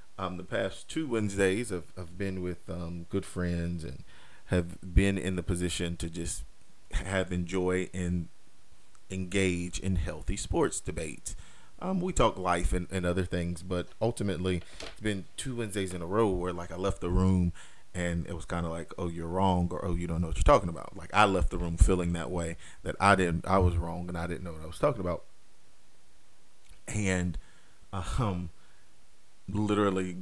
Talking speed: 190 wpm